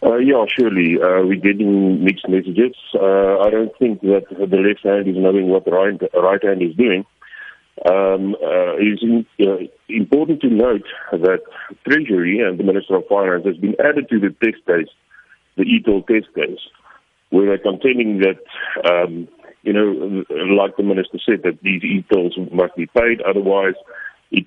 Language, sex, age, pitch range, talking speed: English, male, 50-69, 95-115 Hz, 170 wpm